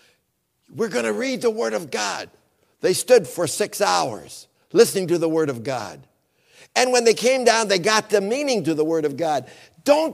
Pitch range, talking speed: 140-205 Hz, 200 wpm